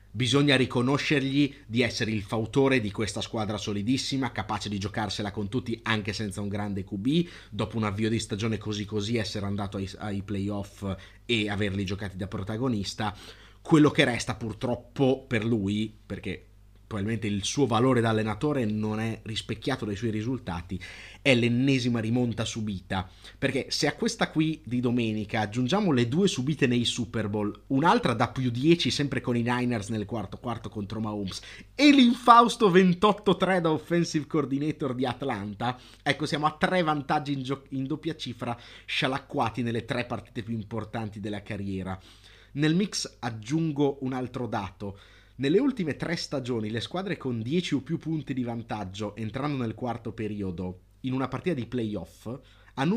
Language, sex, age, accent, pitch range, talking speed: Italian, male, 30-49, native, 105-140 Hz, 160 wpm